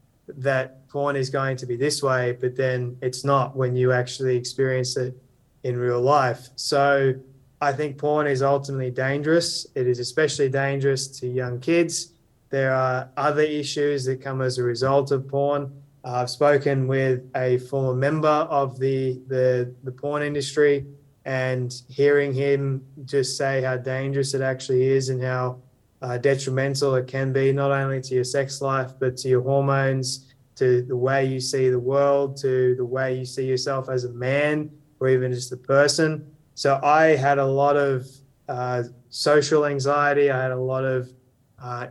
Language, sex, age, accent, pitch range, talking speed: English, male, 20-39, Australian, 130-140 Hz, 170 wpm